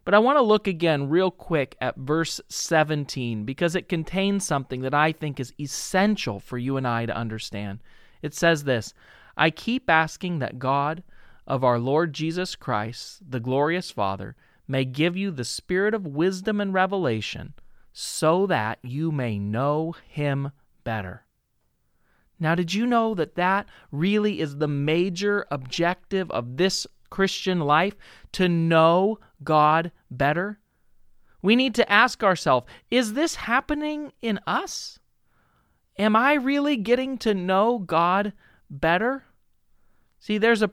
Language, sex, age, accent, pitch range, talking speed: English, male, 40-59, American, 140-205 Hz, 145 wpm